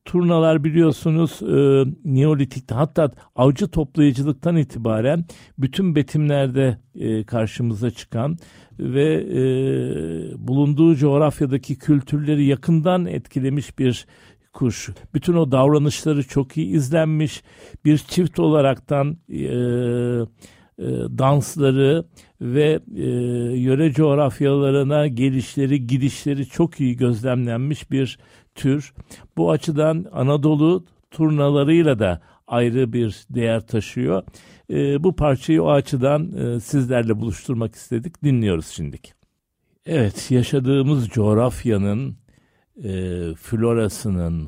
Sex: male